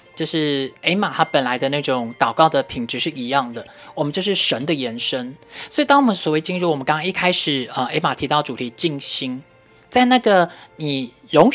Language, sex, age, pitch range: Chinese, male, 20-39, 145-210 Hz